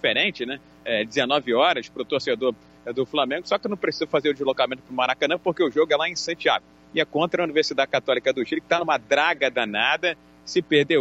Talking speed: 230 wpm